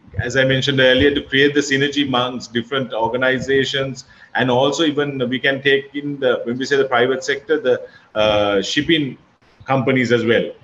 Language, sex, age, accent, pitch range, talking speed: English, male, 30-49, Indian, 125-145 Hz, 175 wpm